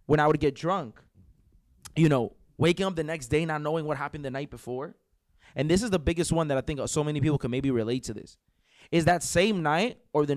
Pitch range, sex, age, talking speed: 135-175 Hz, male, 20-39, 245 wpm